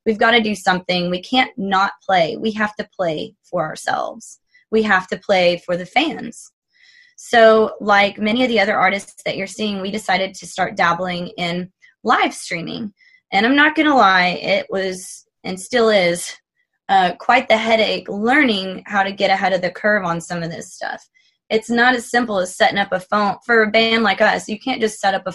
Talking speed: 210 wpm